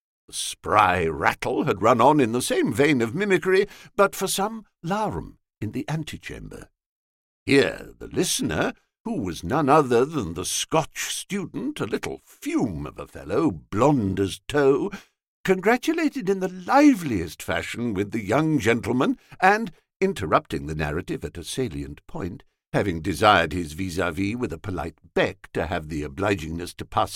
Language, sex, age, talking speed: English, male, 60-79, 155 wpm